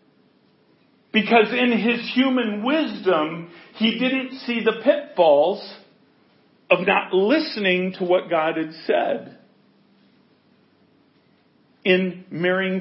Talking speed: 95 wpm